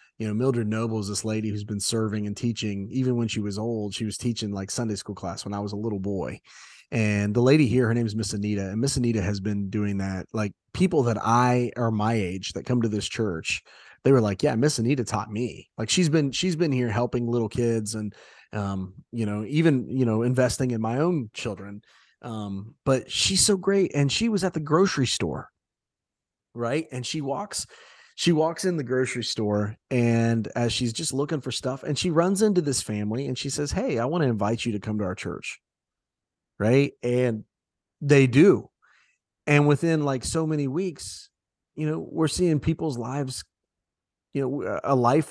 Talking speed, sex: 205 wpm, male